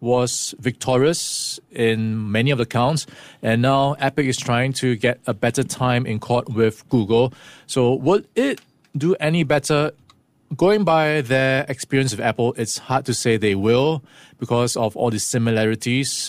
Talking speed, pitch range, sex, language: 160 wpm, 120-145 Hz, male, English